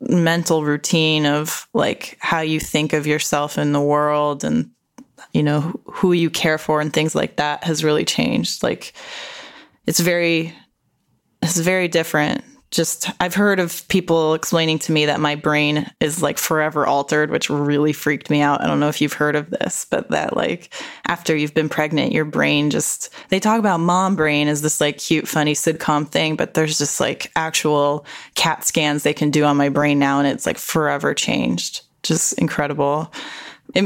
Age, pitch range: 10-29, 150-185 Hz